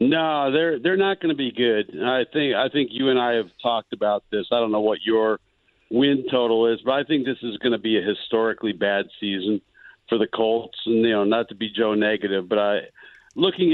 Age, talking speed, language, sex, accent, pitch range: 50-69, 230 wpm, English, male, American, 105-125 Hz